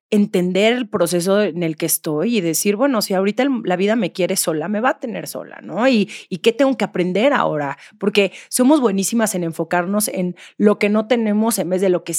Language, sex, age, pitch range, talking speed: Spanish, female, 30-49, 195-255 Hz, 215 wpm